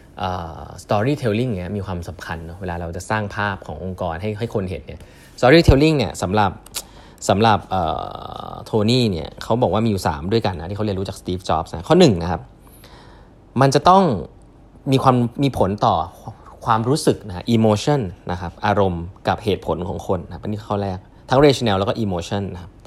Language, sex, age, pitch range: Thai, male, 20-39, 95-140 Hz